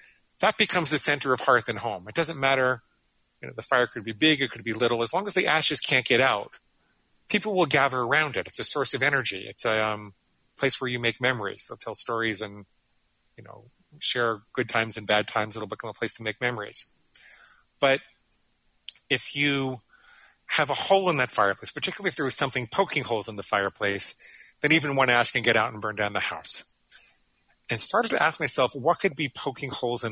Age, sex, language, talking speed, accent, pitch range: 40-59, male, English, 215 wpm, American, 110-135 Hz